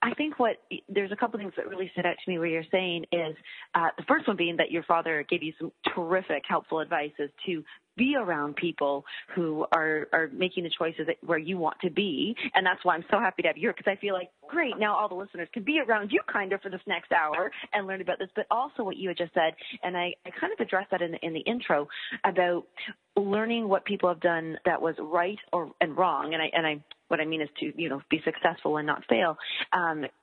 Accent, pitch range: American, 165-200 Hz